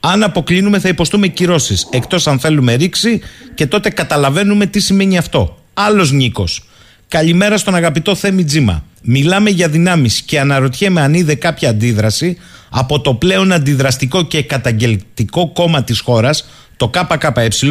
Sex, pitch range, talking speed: male, 120-180 Hz, 140 wpm